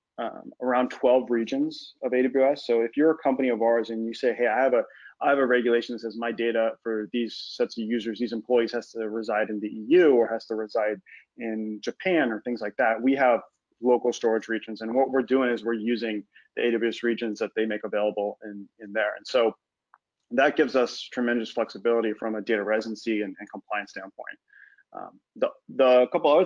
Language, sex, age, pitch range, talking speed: English, male, 30-49, 110-125 Hz, 210 wpm